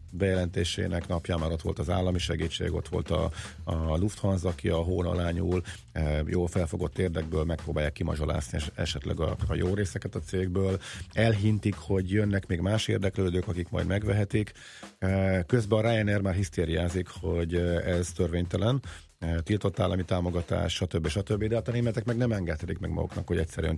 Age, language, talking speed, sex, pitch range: 40-59, Hungarian, 155 wpm, male, 85-100 Hz